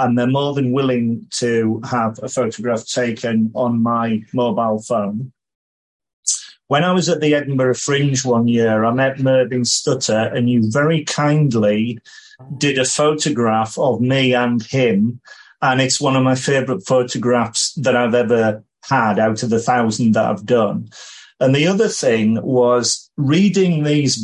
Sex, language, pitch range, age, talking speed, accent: male, English, 115-145 Hz, 40-59, 155 wpm, British